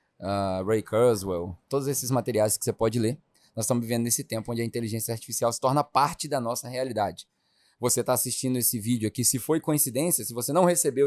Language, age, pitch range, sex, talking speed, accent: English, 20-39, 115-140 Hz, male, 200 wpm, Brazilian